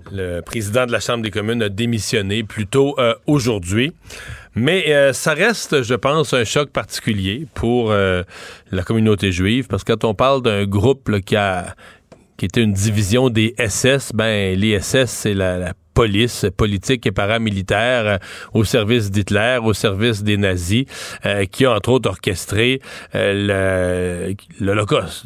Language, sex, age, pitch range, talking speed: French, male, 40-59, 100-120 Hz, 160 wpm